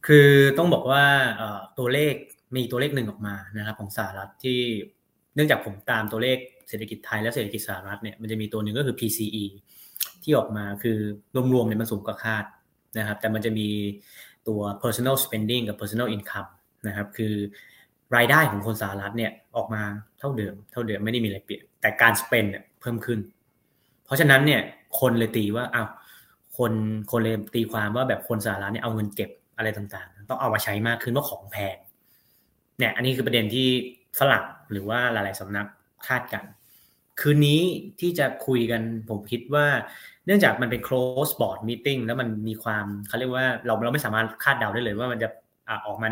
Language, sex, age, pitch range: Thai, male, 20-39, 105-130 Hz